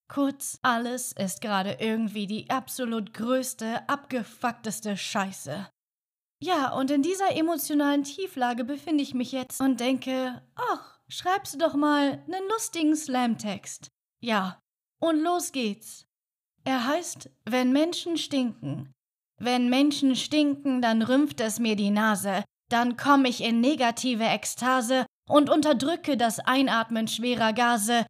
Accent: German